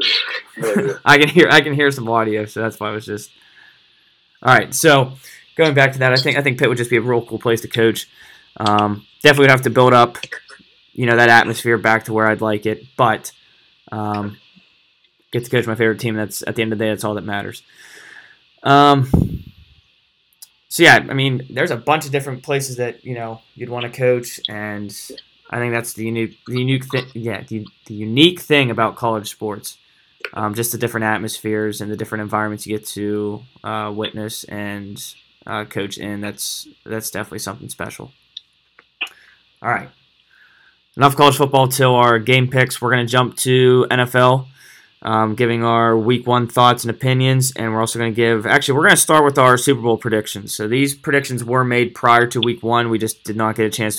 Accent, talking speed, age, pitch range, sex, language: American, 205 wpm, 20-39, 110-130 Hz, male, English